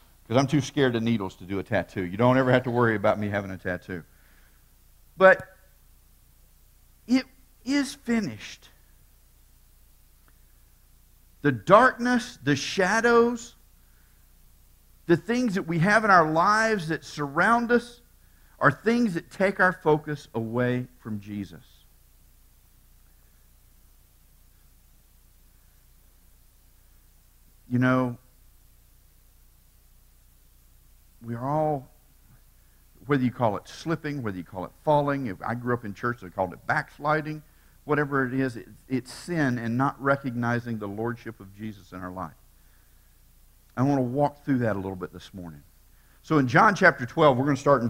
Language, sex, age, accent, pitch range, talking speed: English, male, 50-69, American, 90-150 Hz, 135 wpm